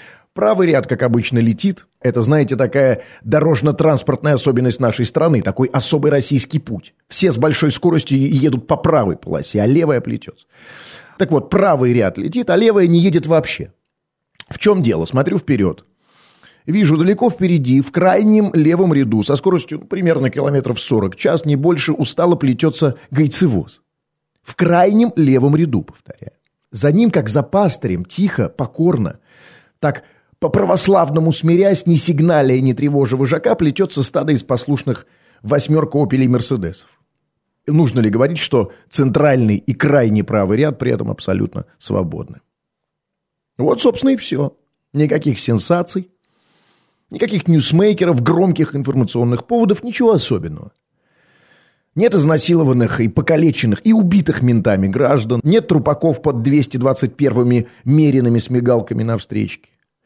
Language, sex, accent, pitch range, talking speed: Russian, male, native, 125-170 Hz, 130 wpm